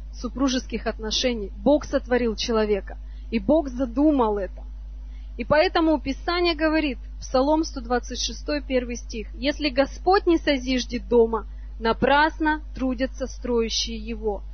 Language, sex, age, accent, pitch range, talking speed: Russian, female, 20-39, native, 230-295 Hz, 110 wpm